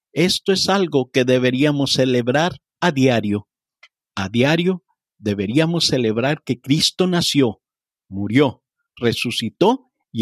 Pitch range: 125-175 Hz